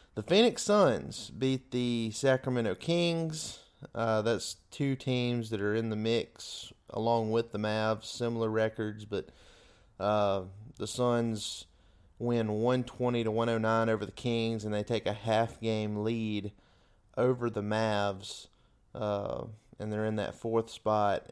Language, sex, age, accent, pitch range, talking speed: English, male, 30-49, American, 105-130 Hz, 135 wpm